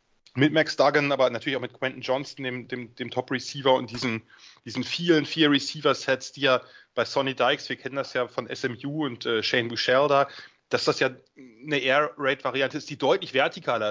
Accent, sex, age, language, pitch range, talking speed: German, male, 30-49, English, 130-160 Hz, 200 wpm